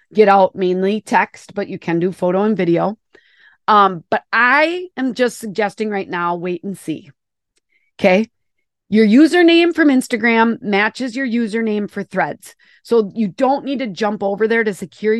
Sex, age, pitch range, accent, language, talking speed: female, 30-49, 185-225 Hz, American, English, 165 wpm